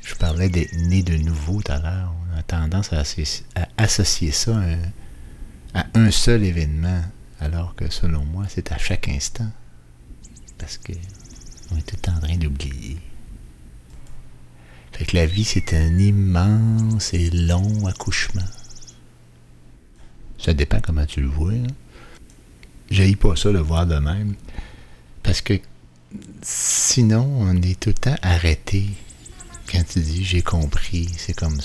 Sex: male